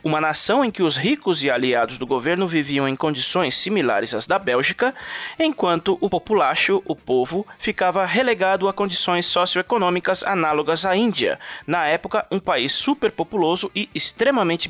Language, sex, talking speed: Portuguese, male, 150 wpm